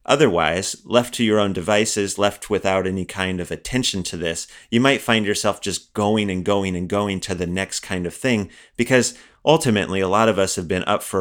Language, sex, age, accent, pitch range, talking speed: English, male, 30-49, American, 95-115 Hz, 215 wpm